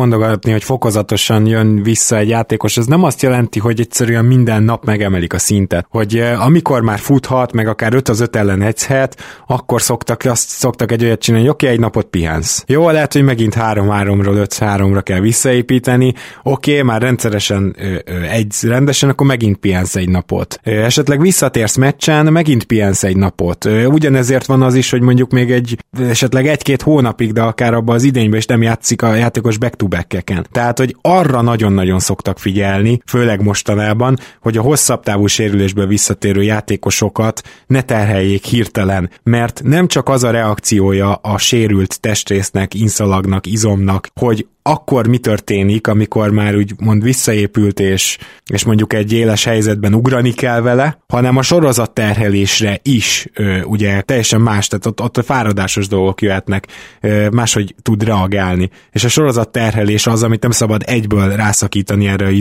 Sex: male